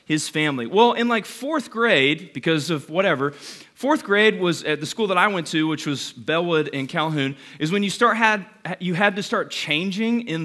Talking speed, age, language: 205 wpm, 30-49, English